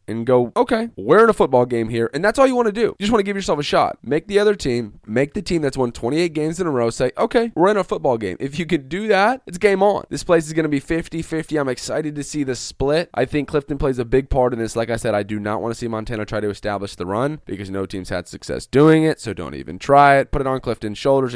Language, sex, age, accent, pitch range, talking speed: English, male, 20-39, American, 115-150 Hz, 300 wpm